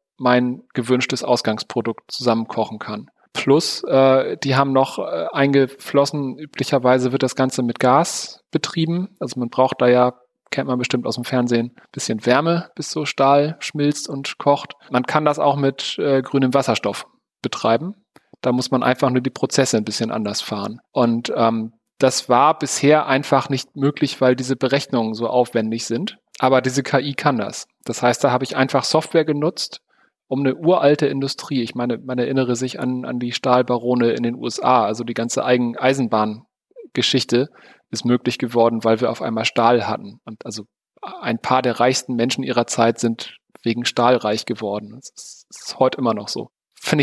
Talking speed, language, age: 175 wpm, German, 40-59